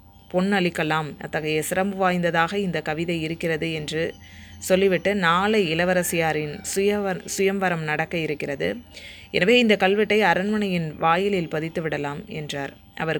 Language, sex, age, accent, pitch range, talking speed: Tamil, female, 20-39, native, 160-195 Hz, 105 wpm